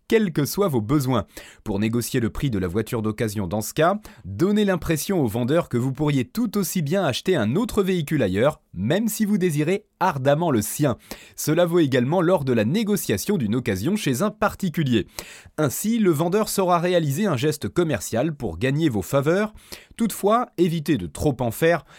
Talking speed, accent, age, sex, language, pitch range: 185 wpm, French, 30-49, male, French, 125-190 Hz